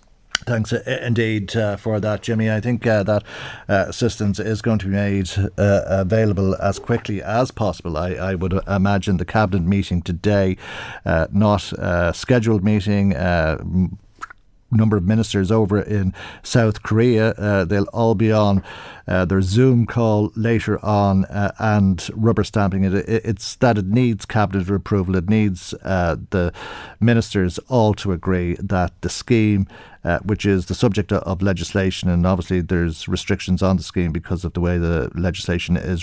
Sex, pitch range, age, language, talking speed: male, 95-110 Hz, 50-69, English, 165 wpm